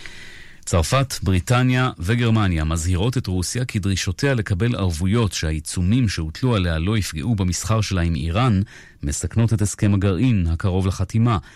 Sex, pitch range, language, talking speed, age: male, 85-105 Hz, Hebrew, 130 wpm, 40-59